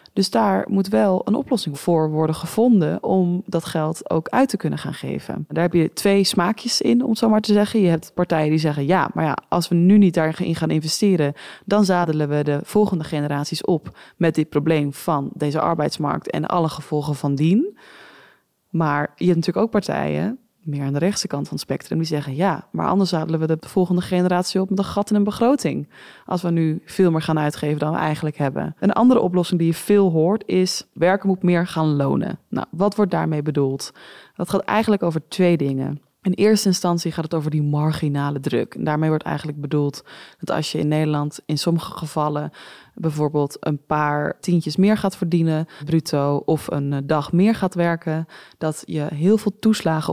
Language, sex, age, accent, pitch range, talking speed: Dutch, female, 20-39, Dutch, 150-190 Hz, 200 wpm